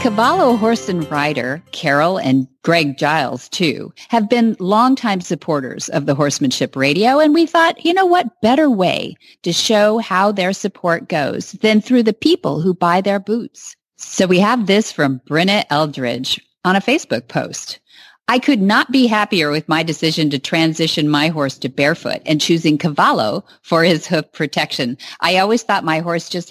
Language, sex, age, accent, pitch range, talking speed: English, female, 40-59, American, 160-225 Hz, 175 wpm